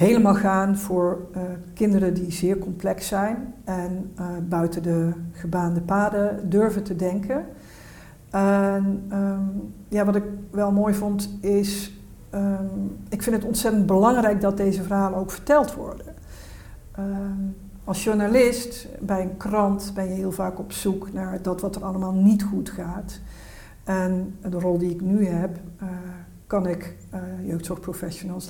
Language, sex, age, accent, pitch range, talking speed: Dutch, female, 60-79, Dutch, 180-200 Hz, 145 wpm